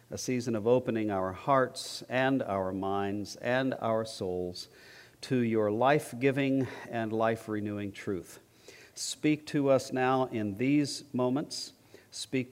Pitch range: 110-140 Hz